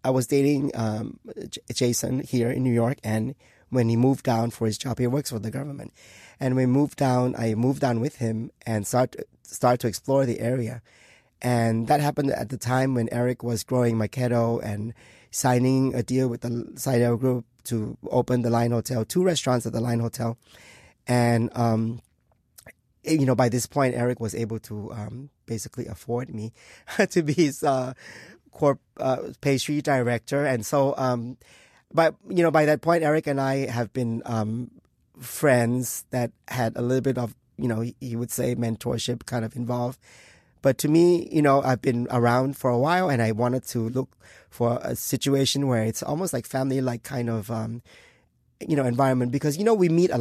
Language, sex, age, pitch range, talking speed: English, male, 20-39, 115-135 Hz, 190 wpm